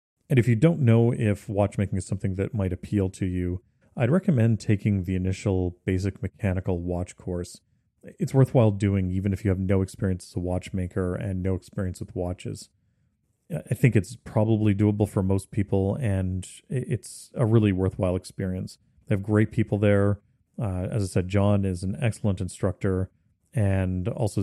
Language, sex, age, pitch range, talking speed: English, male, 30-49, 95-105 Hz, 170 wpm